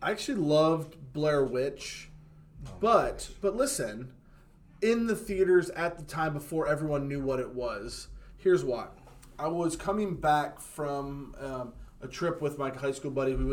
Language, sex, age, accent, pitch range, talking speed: English, male, 20-39, American, 130-150 Hz, 160 wpm